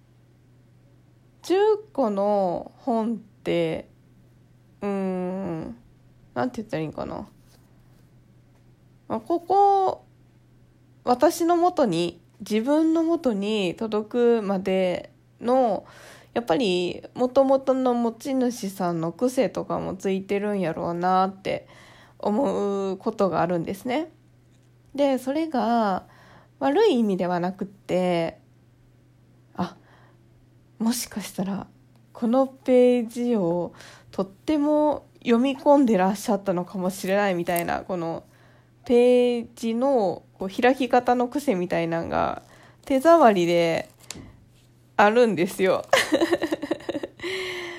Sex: female